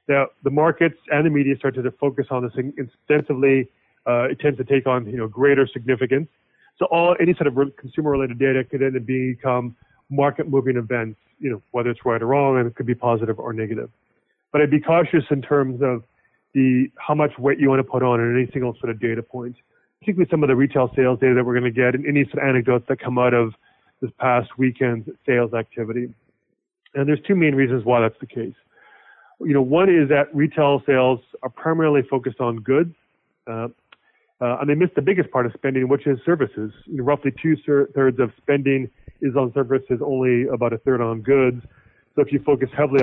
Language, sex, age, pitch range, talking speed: English, male, 30-49, 125-145 Hz, 215 wpm